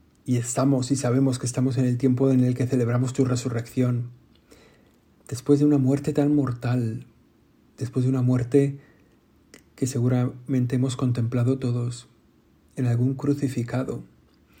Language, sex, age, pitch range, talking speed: Spanish, male, 50-69, 120-135 Hz, 135 wpm